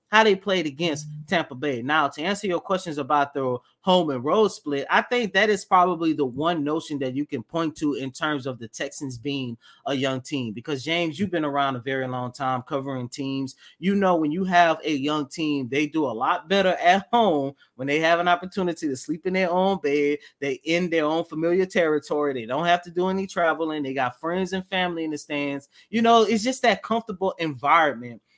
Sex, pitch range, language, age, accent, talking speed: male, 145-200 Hz, English, 20-39, American, 220 wpm